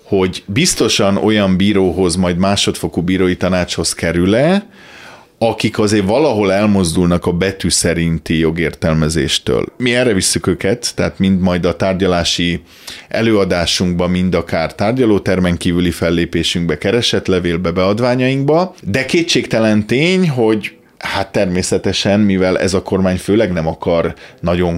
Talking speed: 115 wpm